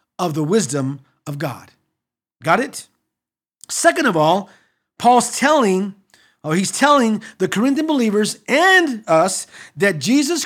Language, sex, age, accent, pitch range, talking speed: English, male, 50-69, American, 145-225 Hz, 130 wpm